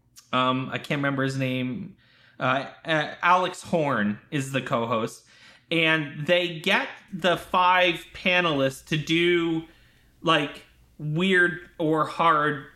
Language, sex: English, male